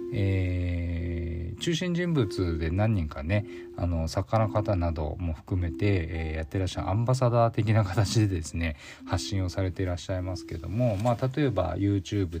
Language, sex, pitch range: Japanese, male, 85-115 Hz